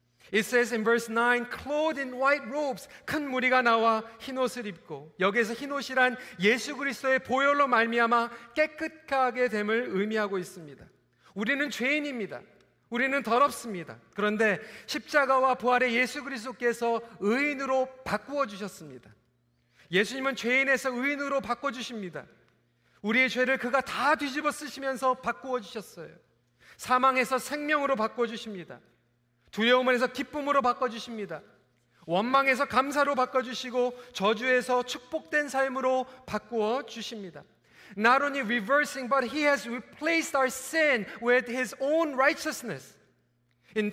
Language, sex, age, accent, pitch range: Korean, male, 40-59, native, 215-275 Hz